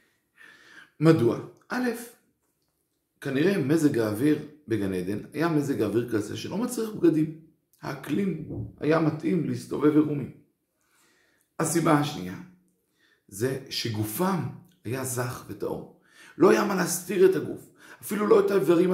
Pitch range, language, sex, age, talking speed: 135-180 Hz, Hebrew, male, 50-69, 115 wpm